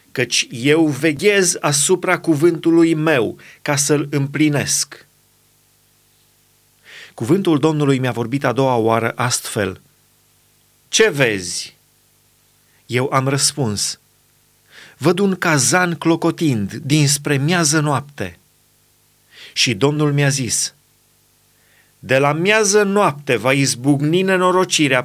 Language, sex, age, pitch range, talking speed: Romanian, male, 30-49, 145-180 Hz, 95 wpm